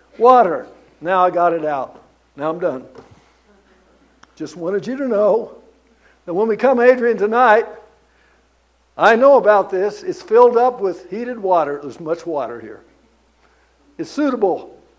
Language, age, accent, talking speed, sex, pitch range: English, 60-79, American, 145 wpm, male, 165-240 Hz